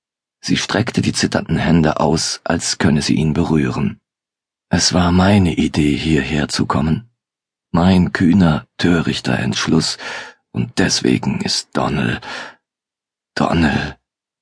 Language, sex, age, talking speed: German, male, 40-59, 110 wpm